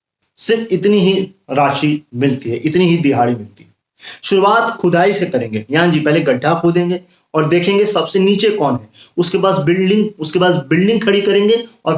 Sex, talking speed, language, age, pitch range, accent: male, 175 wpm, Hindi, 20-39, 140-185 Hz, native